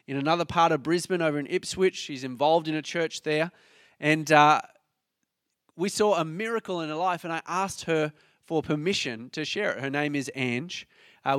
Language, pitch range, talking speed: English, 155-195 Hz, 195 wpm